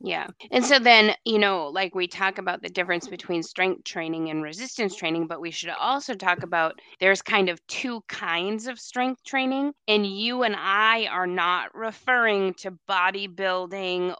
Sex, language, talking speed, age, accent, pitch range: female, English, 175 wpm, 20-39, American, 175-205 Hz